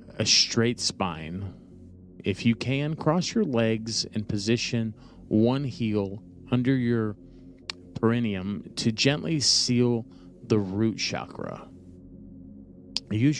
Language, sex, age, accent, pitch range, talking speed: English, male, 30-49, American, 95-125 Hz, 105 wpm